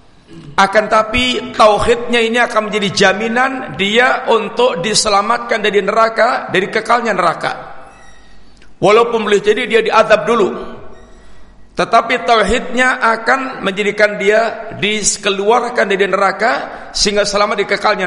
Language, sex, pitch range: Indonesian, male, 185-225 Hz